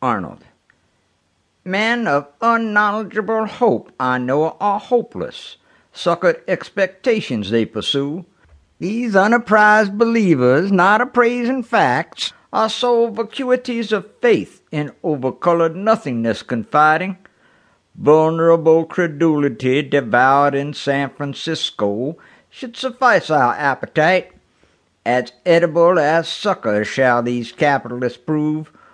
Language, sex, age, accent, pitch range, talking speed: English, male, 60-79, American, 140-205 Hz, 95 wpm